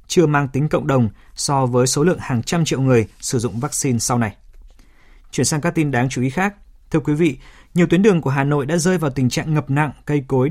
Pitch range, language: 125-150 Hz, Vietnamese